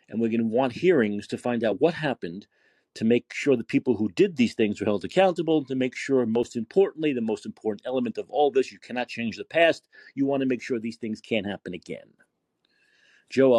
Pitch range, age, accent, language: 115-185 Hz, 40-59, American, English